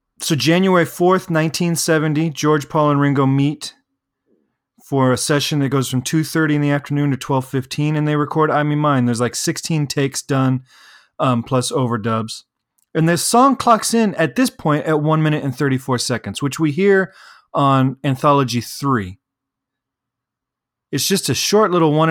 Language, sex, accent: English, male, American